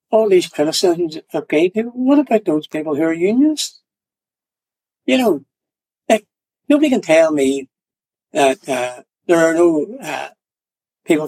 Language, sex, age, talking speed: English, male, 60-79, 145 wpm